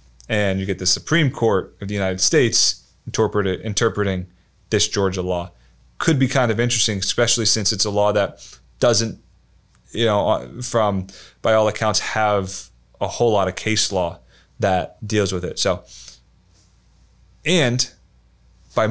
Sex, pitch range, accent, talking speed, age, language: male, 95-125 Hz, American, 145 wpm, 30-49, English